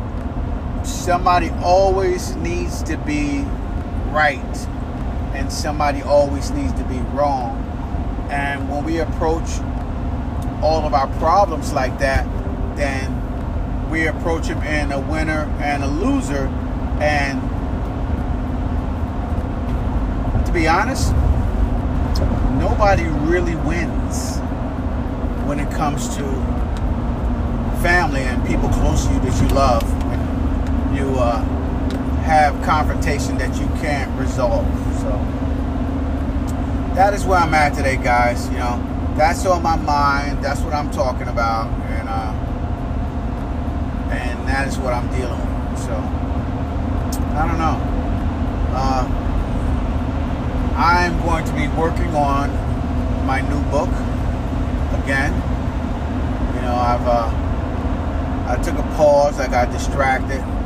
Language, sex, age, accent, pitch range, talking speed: English, male, 30-49, American, 80-90 Hz, 115 wpm